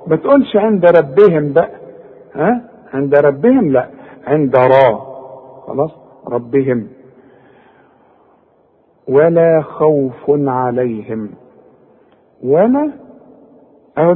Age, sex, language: 50-69, male, Arabic